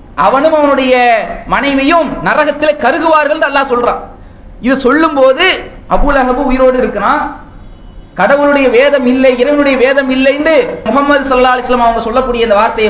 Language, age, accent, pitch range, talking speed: English, 20-39, Indian, 225-285 Hz, 120 wpm